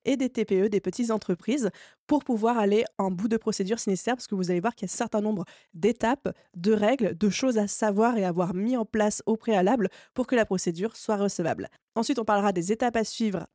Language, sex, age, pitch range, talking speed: French, female, 20-39, 195-240 Hz, 235 wpm